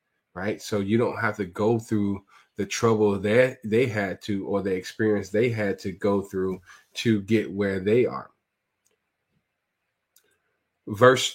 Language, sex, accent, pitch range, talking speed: English, male, American, 105-125 Hz, 150 wpm